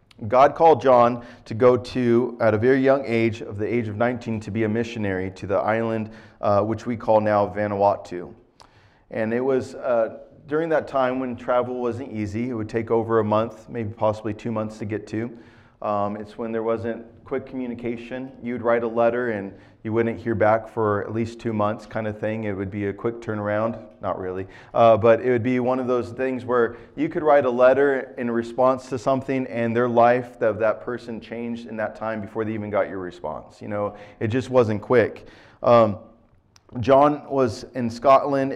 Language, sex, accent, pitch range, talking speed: English, male, American, 110-125 Hz, 205 wpm